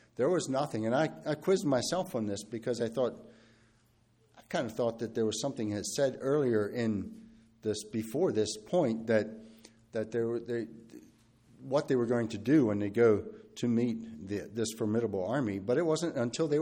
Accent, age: American, 60-79